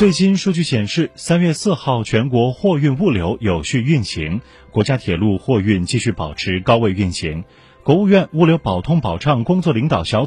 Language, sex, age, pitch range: Chinese, male, 30-49, 100-150 Hz